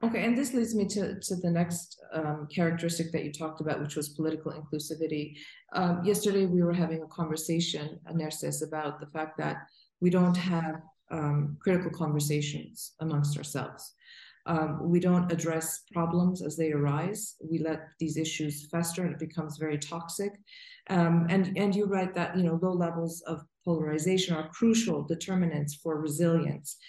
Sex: female